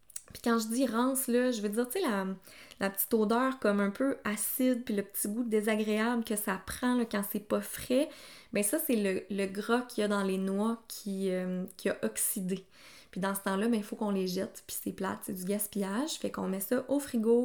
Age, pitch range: 20-39, 200-235 Hz